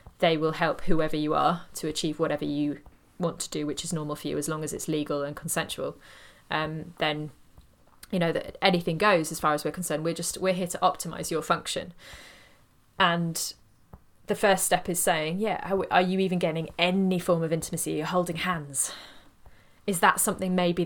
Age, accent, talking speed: 20-39, British, 195 wpm